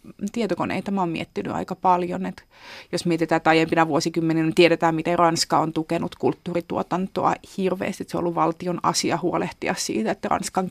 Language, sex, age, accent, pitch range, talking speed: Finnish, female, 30-49, native, 170-190 Hz, 155 wpm